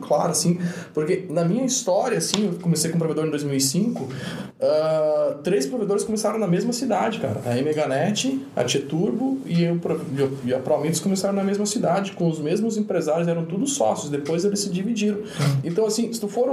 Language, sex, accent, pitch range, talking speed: Portuguese, male, Brazilian, 150-210 Hz, 190 wpm